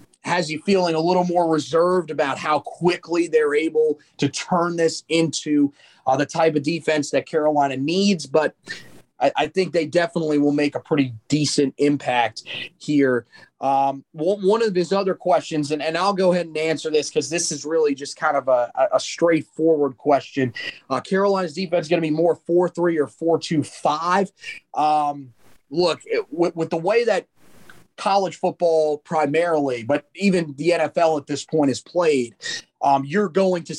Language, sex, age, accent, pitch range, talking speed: English, male, 30-49, American, 140-175 Hz, 170 wpm